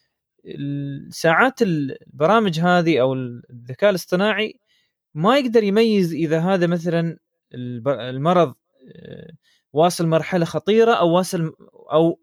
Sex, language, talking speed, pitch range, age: male, Arabic, 95 wpm, 135-195 Hz, 20-39